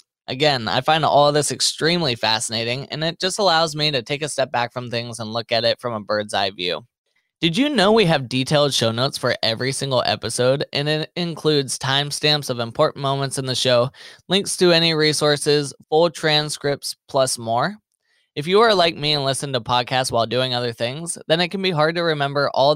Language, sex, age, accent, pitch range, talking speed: English, male, 20-39, American, 125-165 Hz, 210 wpm